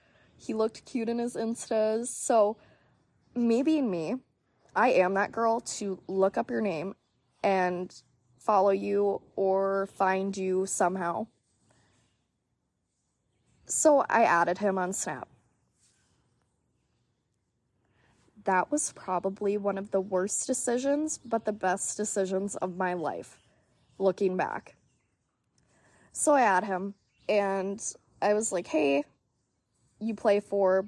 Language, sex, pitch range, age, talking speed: English, female, 175-225 Hz, 20-39, 120 wpm